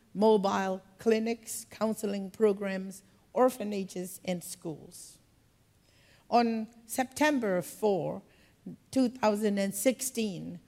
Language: English